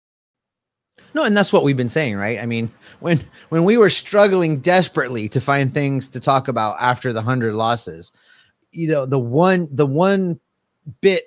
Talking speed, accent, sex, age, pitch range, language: 175 wpm, American, male, 30-49, 120-155 Hz, English